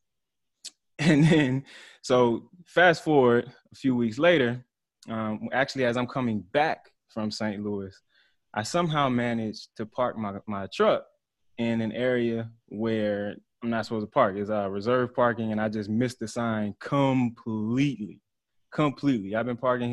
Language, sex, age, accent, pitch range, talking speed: English, male, 20-39, American, 105-125 Hz, 150 wpm